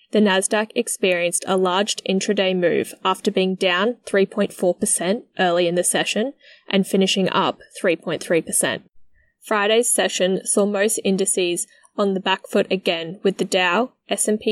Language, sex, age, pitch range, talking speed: English, female, 10-29, 180-215 Hz, 135 wpm